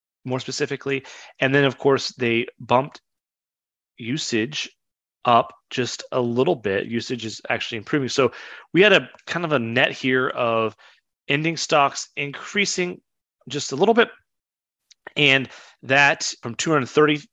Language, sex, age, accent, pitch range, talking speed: English, male, 30-49, American, 120-150 Hz, 135 wpm